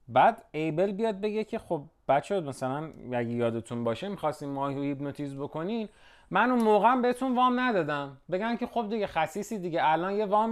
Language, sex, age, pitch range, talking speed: Persian, male, 30-49, 130-190 Hz, 170 wpm